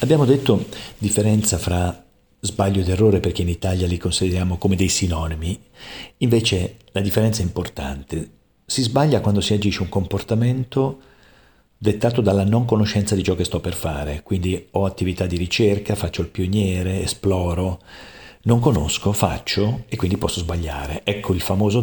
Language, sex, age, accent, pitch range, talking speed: Italian, male, 50-69, native, 90-105 Hz, 155 wpm